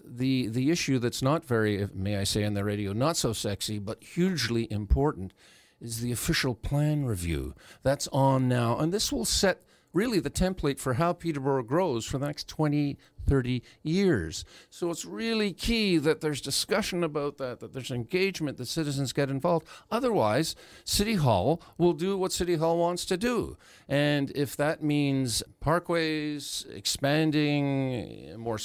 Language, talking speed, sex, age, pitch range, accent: English, 160 wpm, male, 50-69, 120-165 Hz, American